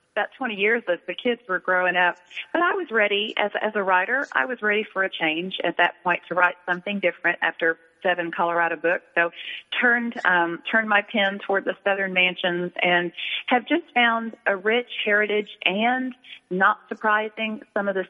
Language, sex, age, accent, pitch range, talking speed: English, female, 40-59, American, 175-205 Hz, 190 wpm